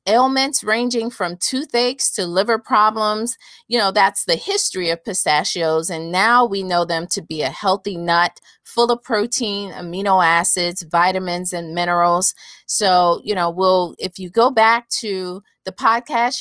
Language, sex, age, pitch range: English, female, 40-59, 175-225 Hz